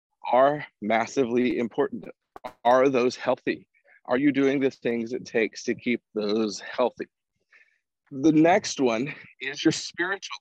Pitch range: 115-145 Hz